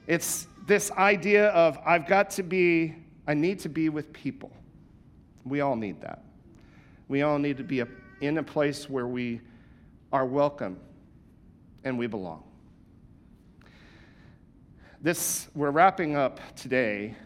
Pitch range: 115-155 Hz